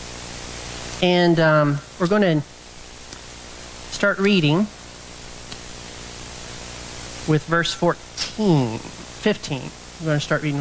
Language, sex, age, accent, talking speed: English, male, 40-59, American, 90 wpm